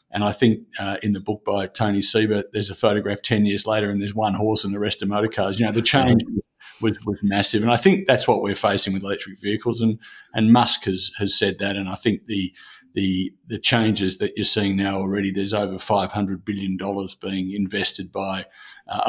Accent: Australian